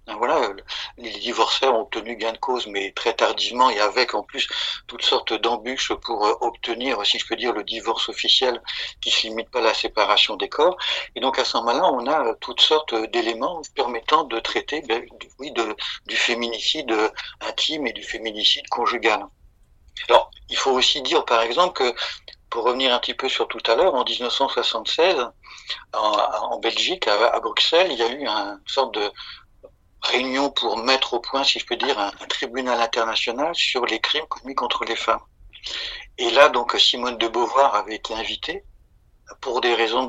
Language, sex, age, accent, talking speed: French, male, 50-69, French, 185 wpm